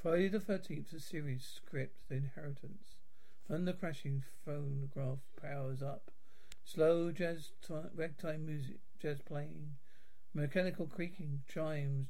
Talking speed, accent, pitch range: 120 wpm, British, 140-185 Hz